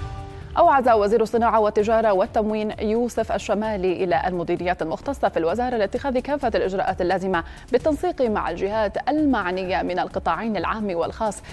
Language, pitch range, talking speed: Arabic, 190-250 Hz, 125 wpm